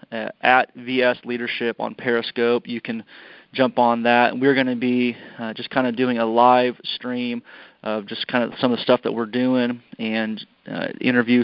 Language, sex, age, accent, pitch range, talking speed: English, male, 30-49, American, 120-135 Hz, 190 wpm